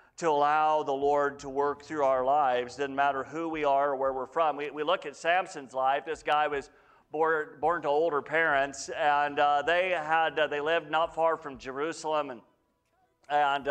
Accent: American